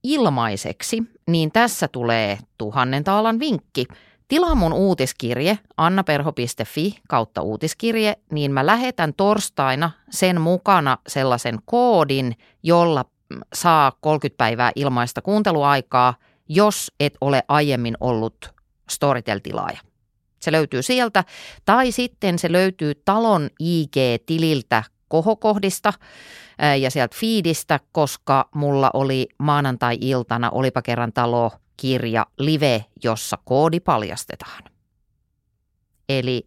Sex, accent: female, native